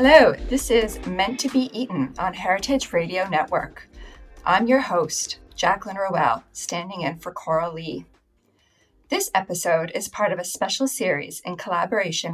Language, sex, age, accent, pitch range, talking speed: English, female, 30-49, American, 170-235 Hz, 150 wpm